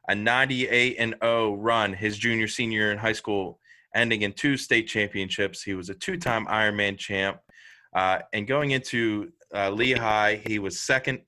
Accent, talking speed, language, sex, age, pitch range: American, 165 wpm, English, male, 20-39, 95-110 Hz